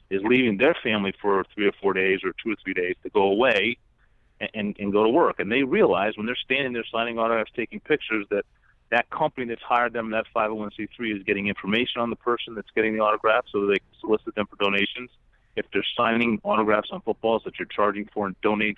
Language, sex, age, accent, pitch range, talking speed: English, male, 30-49, American, 100-115 Hz, 225 wpm